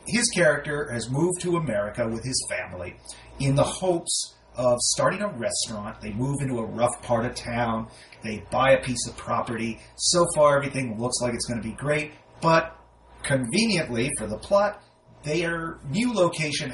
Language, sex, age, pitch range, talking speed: English, male, 30-49, 115-150 Hz, 170 wpm